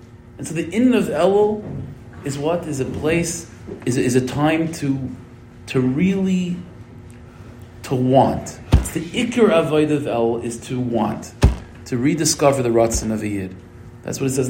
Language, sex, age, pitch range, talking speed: English, male, 40-59, 110-130 Hz, 165 wpm